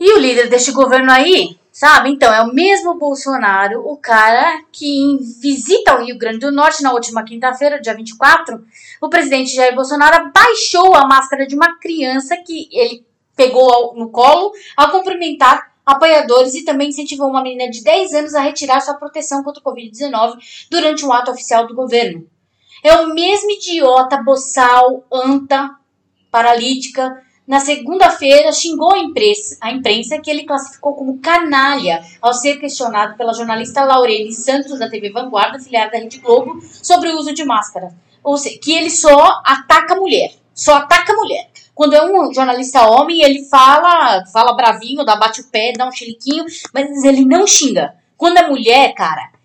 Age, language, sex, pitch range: 20-39, Portuguese, female, 240-305 Hz